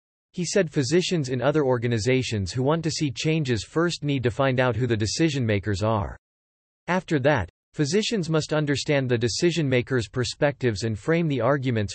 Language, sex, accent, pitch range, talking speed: English, male, American, 110-150 Hz, 160 wpm